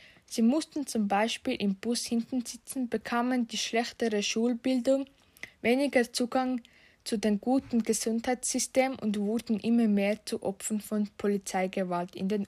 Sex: female